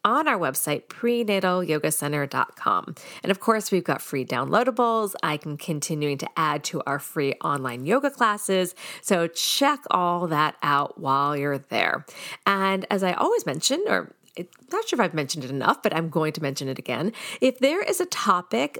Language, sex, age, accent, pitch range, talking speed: English, female, 40-59, American, 165-235 Hz, 175 wpm